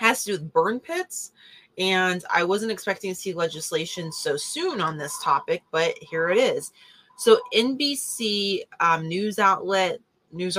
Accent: American